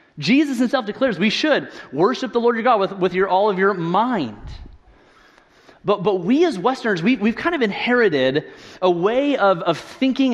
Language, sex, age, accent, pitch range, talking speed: English, male, 30-49, American, 180-245 Hz, 185 wpm